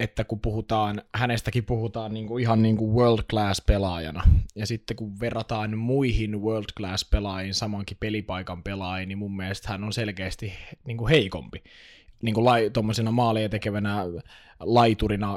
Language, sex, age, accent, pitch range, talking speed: Finnish, male, 20-39, native, 100-120 Hz, 135 wpm